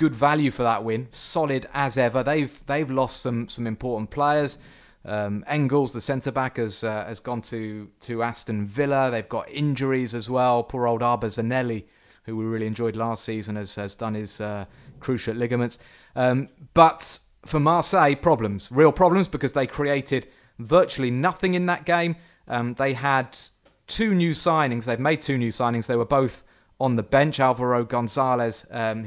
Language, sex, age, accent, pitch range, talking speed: English, male, 30-49, British, 115-145 Hz, 175 wpm